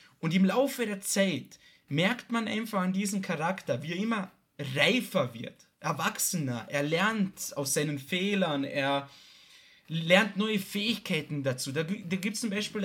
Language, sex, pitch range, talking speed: German, male, 150-205 Hz, 150 wpm